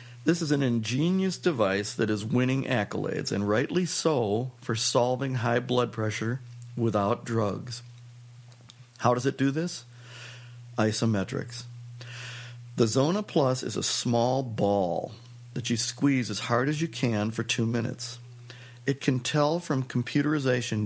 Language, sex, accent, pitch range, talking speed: English, male, American, 115-130 Hz, 140 wpm